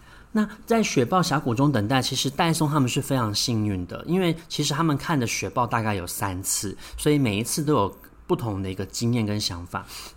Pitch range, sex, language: 105-145 Hz, male, Chinese